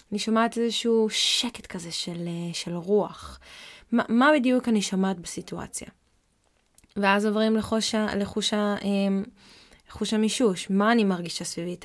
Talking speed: 130 wpm